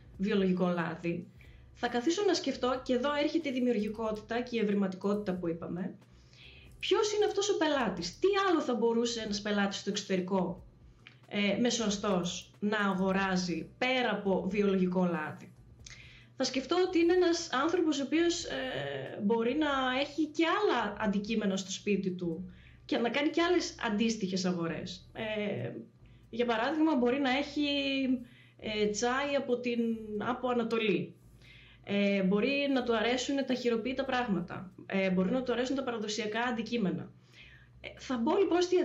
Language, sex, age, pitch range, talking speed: Greek, female, 20-39, 190-280 Hz, 145 wpm